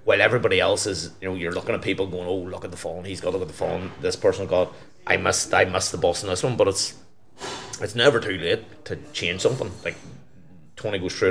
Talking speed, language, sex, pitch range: 250 wpm, English, male, 90-115 Hz